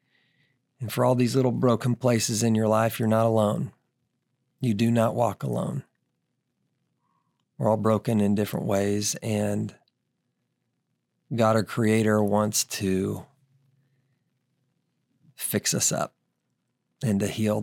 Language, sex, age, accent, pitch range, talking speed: English, male, 40-59, American, 105-125 Hz, 125 wpm